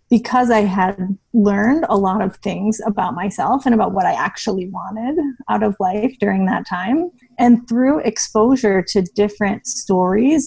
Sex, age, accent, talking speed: female, 30-49, American, 160 wpm